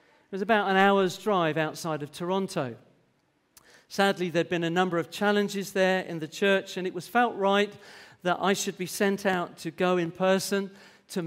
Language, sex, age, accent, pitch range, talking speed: English, male, 40-59, British, 170-205 Hz, 190 wpm